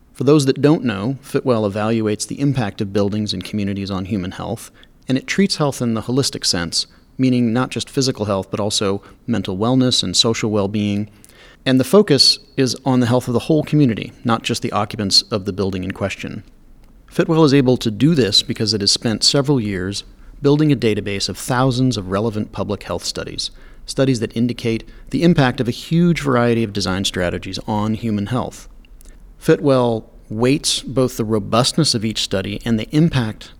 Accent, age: American, 30-49